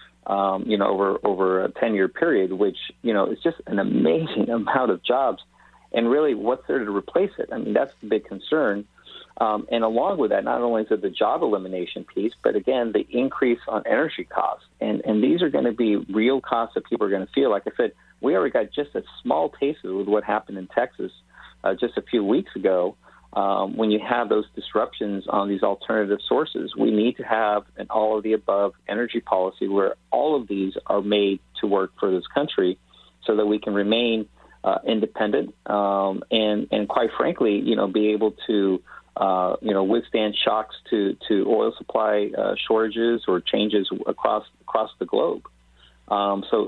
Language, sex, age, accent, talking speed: English, male, 40-59, American, 200 wpm